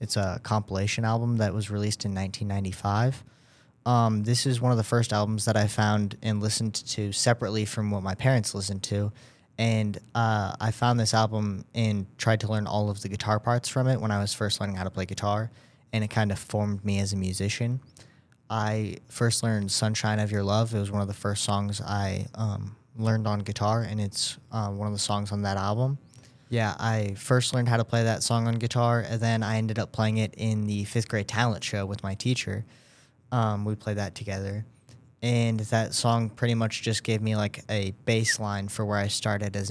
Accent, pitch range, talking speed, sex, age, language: American, 105-120 Hz, 215 wpm, male, 10-29, English